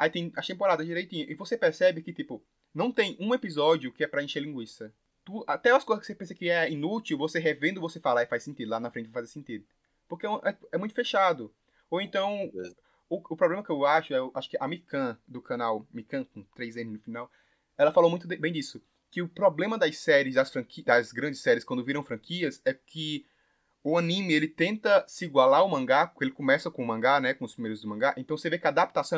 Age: 20-39